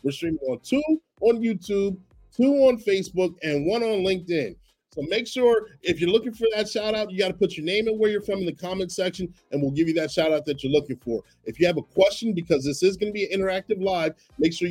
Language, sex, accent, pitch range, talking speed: English, male, American, 155-195 Hz, 260 wpm